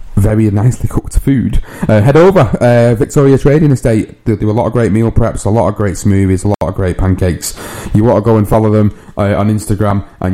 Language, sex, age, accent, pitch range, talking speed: English, male, 30-49, British, 100-120 Hz, 230 wpm